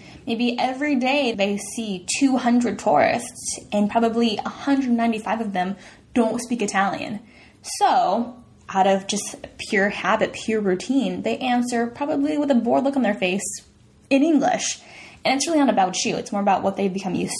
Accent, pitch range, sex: American, 205-270 Hz, female